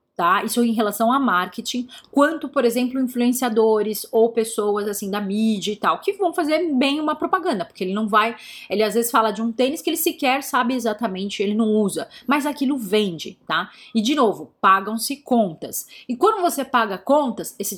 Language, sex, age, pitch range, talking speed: Portuguese, female, 30-49, 215-275 Hz, 190 wpm